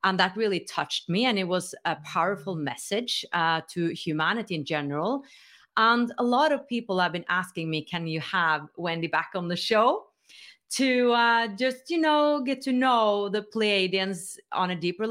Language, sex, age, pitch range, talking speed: English, female, 30-49, 165-240 Hz, 185 wpm